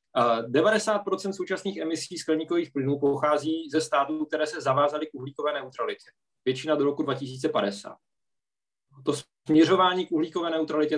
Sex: male